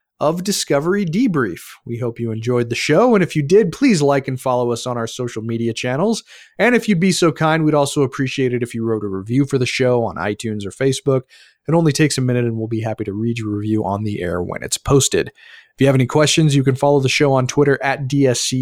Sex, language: male, English